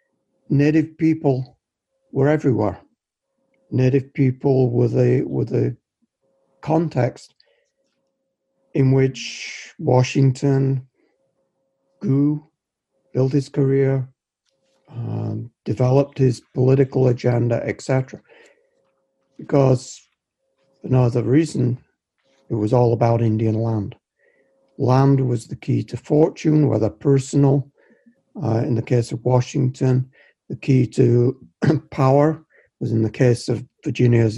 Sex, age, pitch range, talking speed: male, 60-79, 125-145 Hz, 100 wpm